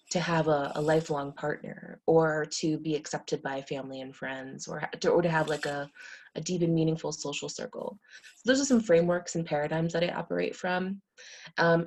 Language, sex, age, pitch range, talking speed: English, female, 20-39, 155-185 Hz, 185 wpm